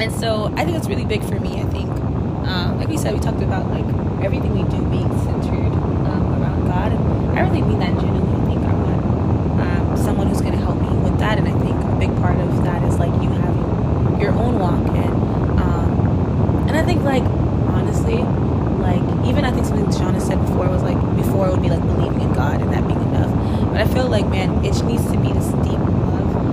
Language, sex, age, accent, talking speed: English, female, 20-39, American, 235 wpm